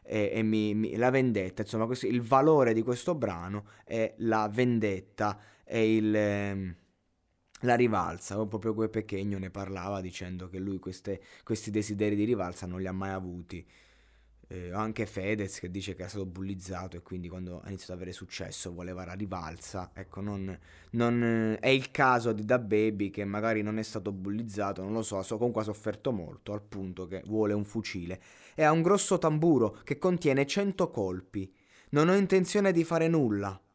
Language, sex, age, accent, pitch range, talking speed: Italian, male, 20-39, native, 95-130 Hz, 180 wpm